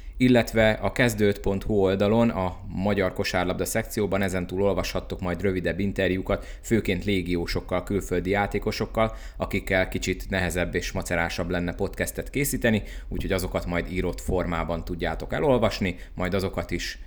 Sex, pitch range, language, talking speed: male, 85-100 Hz, Hungarian, 125 wpm